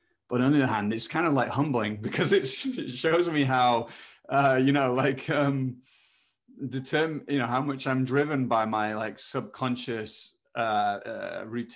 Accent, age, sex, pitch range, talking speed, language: British, 20-39, male, 110-135 Hz, 170 wpm, English